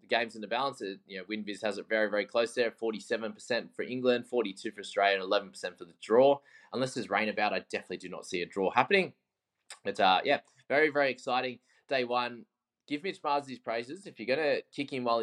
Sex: male